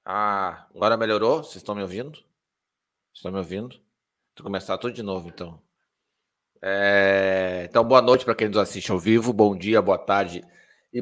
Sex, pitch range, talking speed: male, 100-125 Hz, 175 wpm